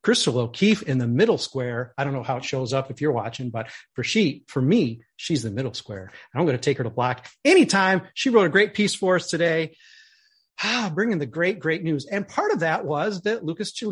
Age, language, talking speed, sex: 40-59, English, 235 wpm, male